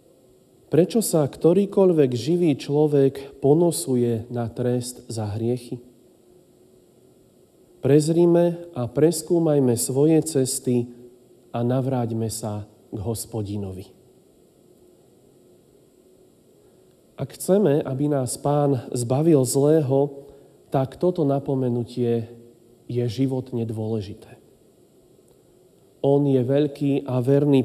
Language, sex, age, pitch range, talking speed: Slovak, male, 40-59, 120-145 Hz, 80 wpm